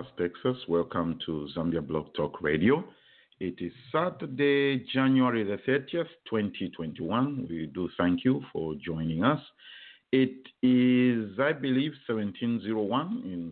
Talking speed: 115 wpm